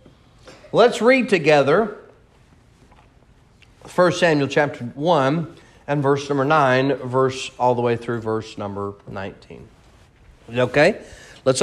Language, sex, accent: English, male, American